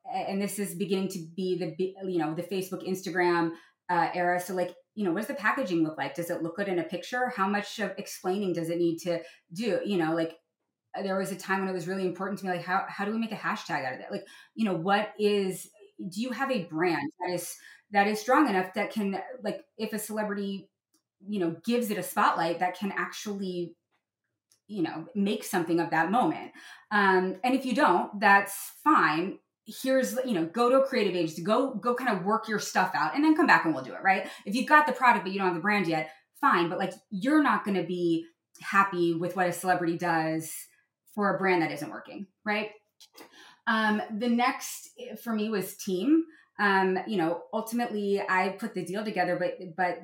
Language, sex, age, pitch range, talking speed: English, female, 20-39, 175-215 Hz, 225 wpm